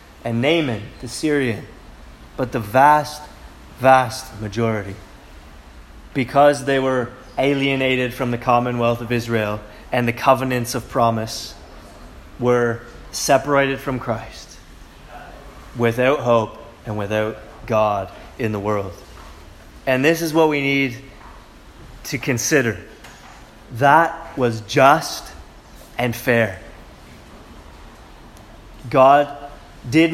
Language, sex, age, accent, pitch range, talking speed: English, male, 30-49, American, 105-135 Hz, 100 wpm